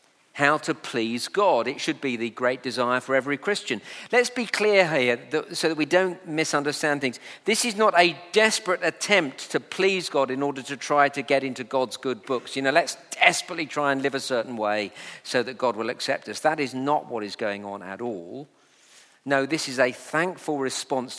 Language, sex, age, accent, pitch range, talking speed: English, male, 50-69, British, 115-155 Hz, 205 wpm